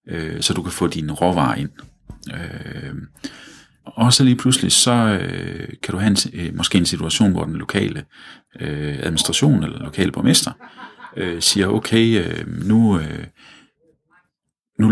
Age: 40-59